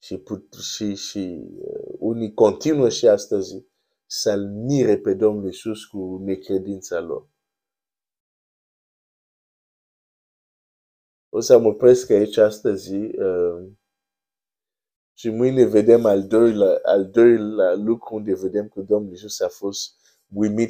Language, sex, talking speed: Romanian, male, 120 wpm